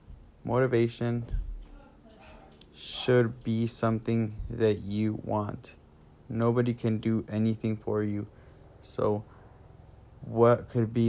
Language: English